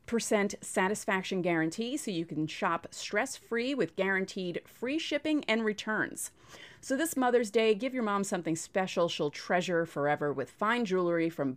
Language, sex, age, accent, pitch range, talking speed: English, female, 30-49, American, 170-240 Hz, 155 wpm